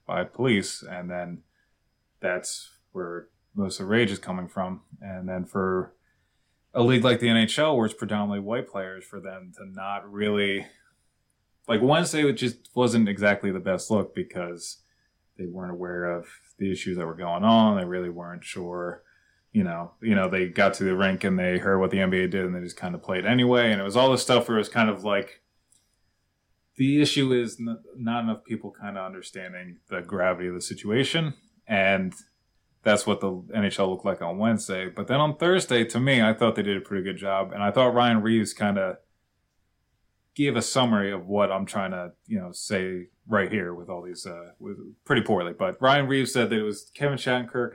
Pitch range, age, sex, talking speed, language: 95-120 Hz, 20-39, male, 205 wpm, English